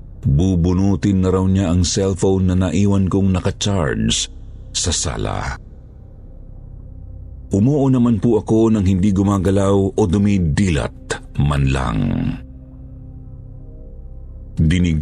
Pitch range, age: 80-105 Hz, 50-69